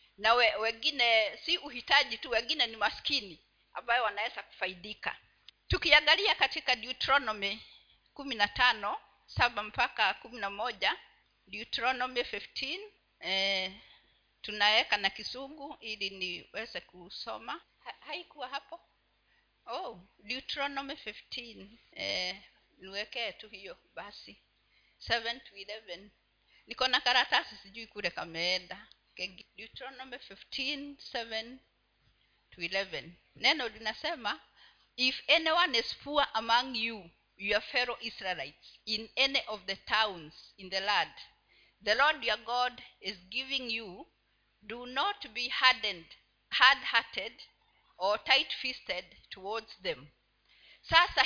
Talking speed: 105 wpm